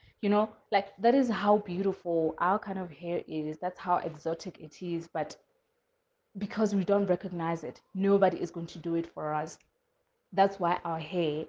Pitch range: 165-200 Hz